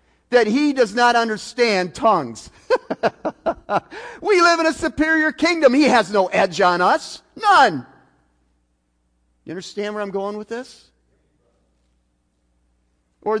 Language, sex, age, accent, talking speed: English, male, 40-59, American, 120 wpm